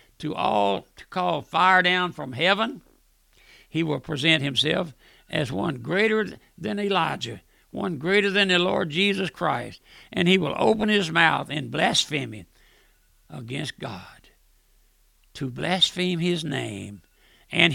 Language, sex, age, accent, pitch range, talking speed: English, male, 60-79, American, 160-195 Hz, 130 wpm